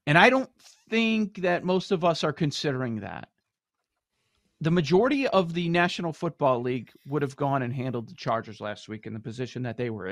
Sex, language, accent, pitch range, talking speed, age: male, English, American, 130-180 Hz, 195 wpm, 40-59